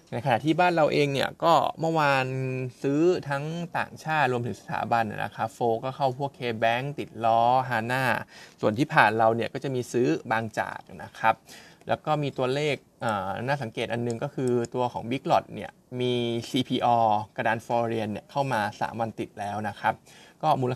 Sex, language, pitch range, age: male, Thai, 115-140 Hz, 20-39